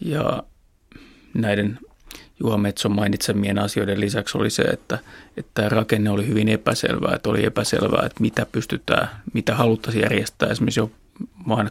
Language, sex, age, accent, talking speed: Finnish, male, 30-49, native, 140 wpm